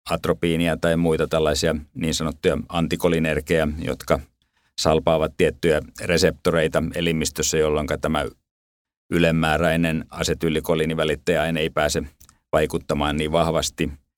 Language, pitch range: Finnish, 75-80 Hz